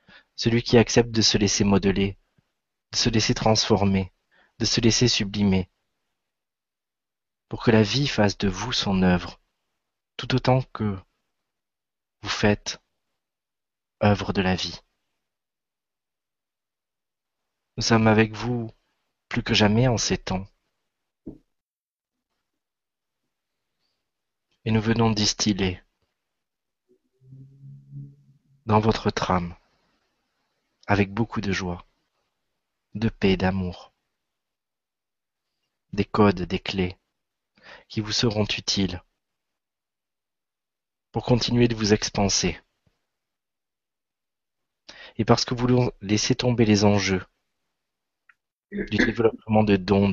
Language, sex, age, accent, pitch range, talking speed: French, male, 30-49, French, 100-120 Hz, 100 wpm